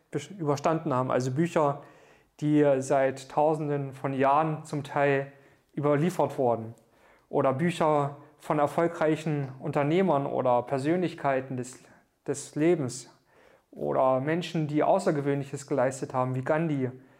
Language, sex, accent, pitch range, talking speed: German, male, German, 135-160 Hz, 110 wpm